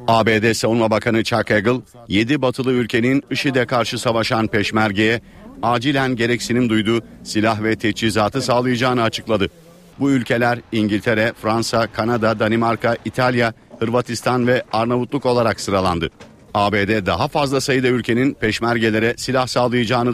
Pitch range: 110-120 Hz